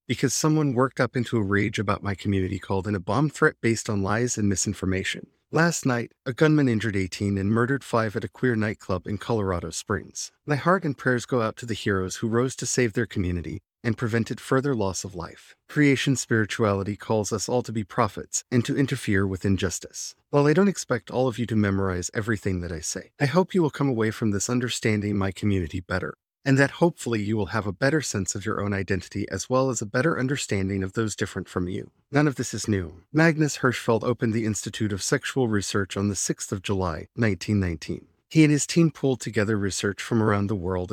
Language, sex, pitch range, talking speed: English, male, 100-130 Hz, 220 wpm